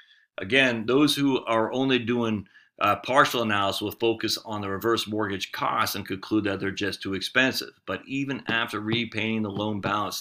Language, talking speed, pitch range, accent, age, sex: English, 175 wpm, 95-110 Hz, American, 40-59, male